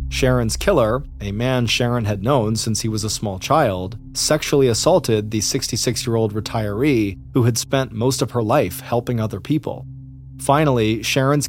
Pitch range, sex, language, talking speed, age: 105-130 Hz, male, English, 165 wpm, 30-49